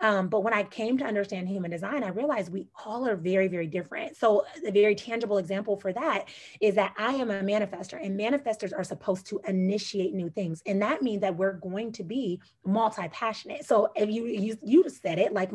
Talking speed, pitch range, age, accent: 210 wpm, 190-230 Hz, 30-49, American